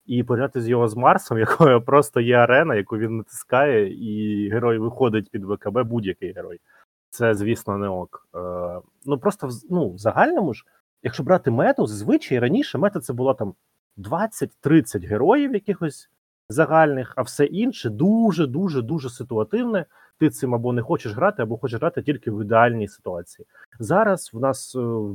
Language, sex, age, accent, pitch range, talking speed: Ukrainian, male, 30-49, native, 110-145 Hz, 155 wpm